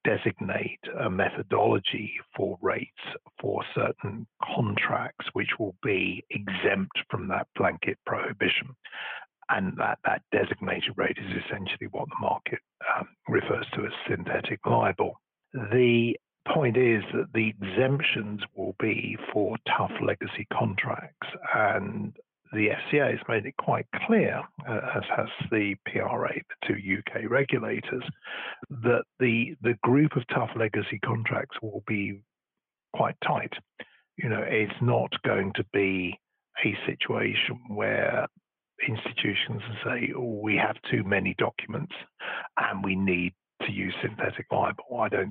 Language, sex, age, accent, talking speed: English, male, 50-69, British, 130 wpm